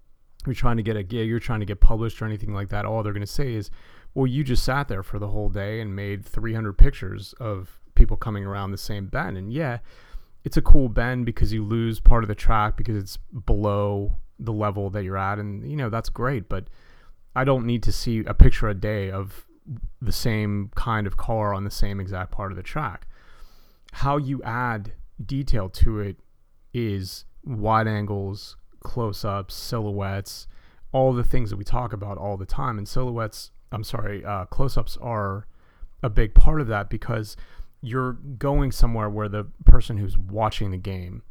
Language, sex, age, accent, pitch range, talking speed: English, male, 30-49, American, 100-120 Hz, 195 wpm